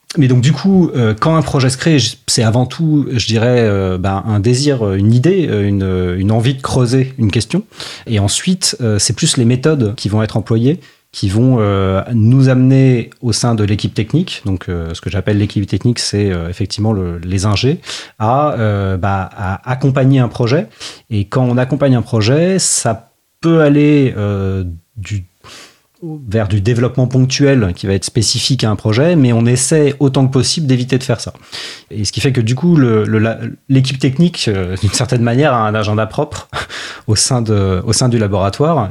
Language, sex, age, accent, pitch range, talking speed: French, male, 30-49, French, 105-135 Hz, 195 wpm